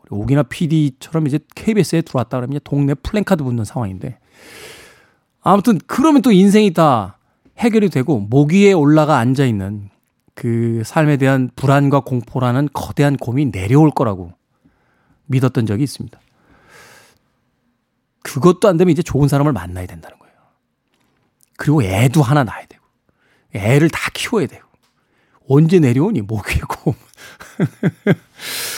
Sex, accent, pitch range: male, native, 120-160 Hz